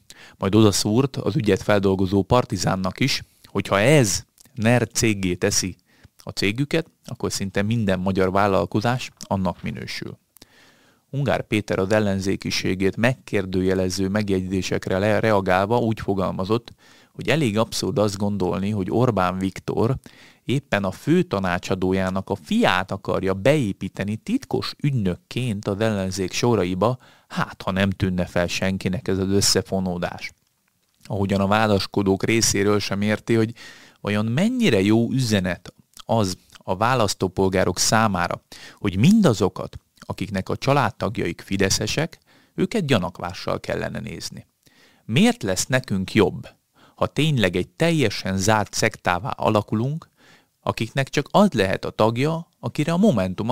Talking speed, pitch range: 120 wpm, 95-120 Hz